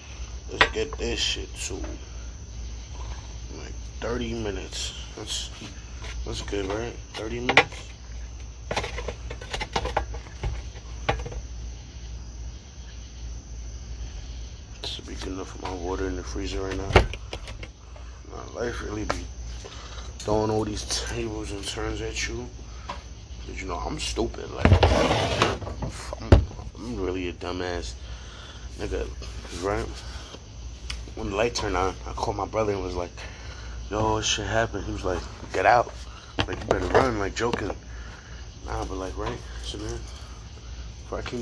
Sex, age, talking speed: male, 30-49, 125 wpm